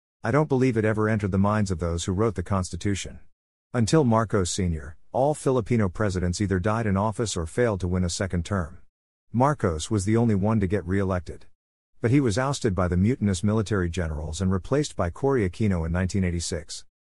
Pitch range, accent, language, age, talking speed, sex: 90-110 Hz, American, English, 50-69, 195 wpm, male